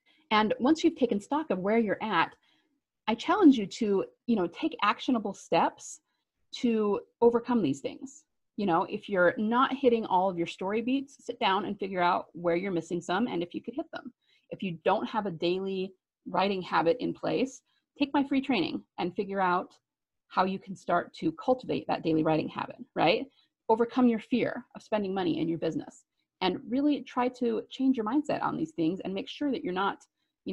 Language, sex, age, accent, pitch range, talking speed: English, female, 30-49, American, 180-265 Hz, 200 wpm